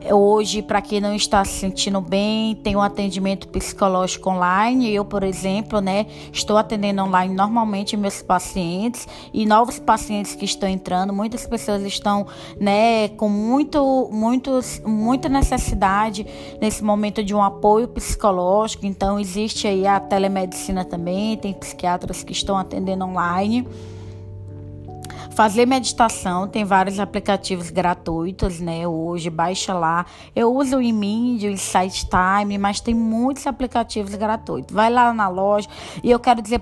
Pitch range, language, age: 195-230 Hz, Portuguese, 20-39